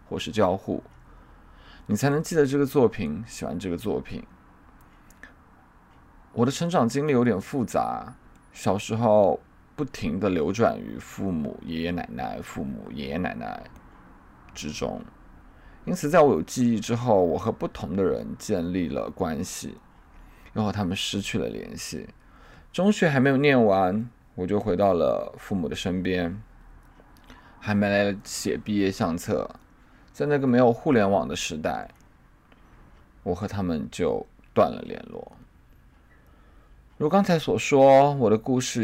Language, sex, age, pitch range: Chinese, male, 20-39, 80-120 Hz